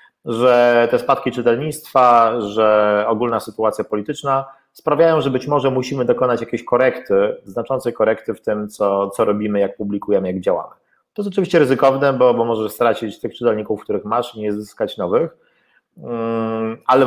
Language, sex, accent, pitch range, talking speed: Polish, male, native, 105-135 Hz, 155 wpm